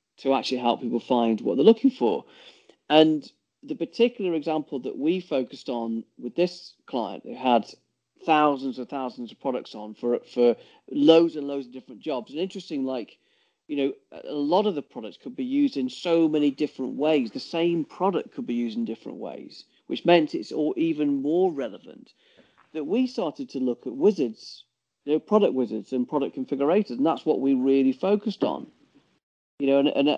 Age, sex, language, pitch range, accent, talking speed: 40-59, male, English, 125-190 Hz, British, 190 wpm